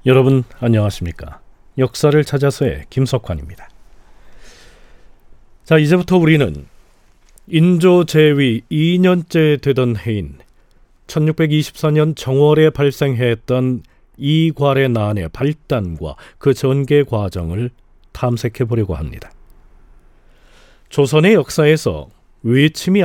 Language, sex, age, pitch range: Korean, male, 40-59, 105-155 Hz